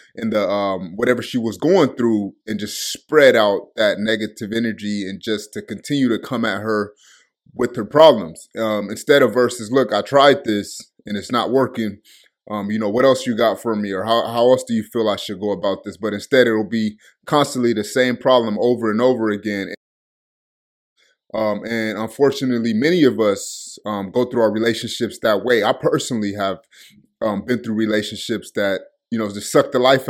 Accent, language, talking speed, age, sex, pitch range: American, English, 195 wpm, 20-39, male, 105-125 Hz